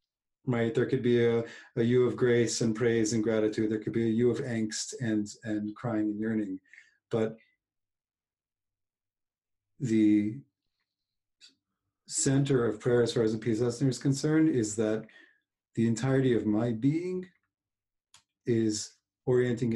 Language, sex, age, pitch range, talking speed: English, male, 40-59, 110-135 Hz, 140 wpm